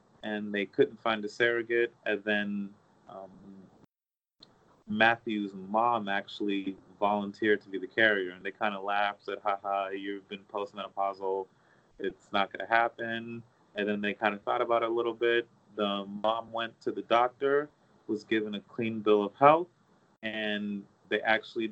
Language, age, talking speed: English, 30-49, 165 wpm